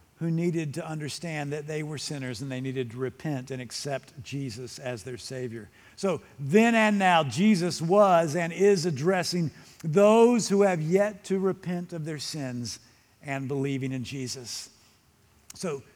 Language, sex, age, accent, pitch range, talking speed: English, male, 50-69, American, 130-205 Hz, 160 wpm